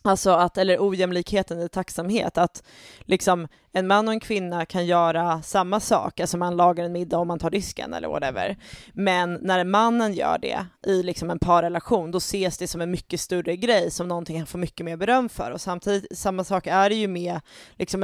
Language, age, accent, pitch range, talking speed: English, 20-39, Swedish, 175-205 Hz, 205 wpm